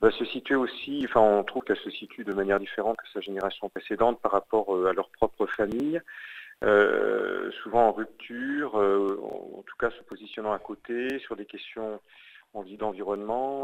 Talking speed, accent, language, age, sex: 175 wpm, French, French, 40-59, male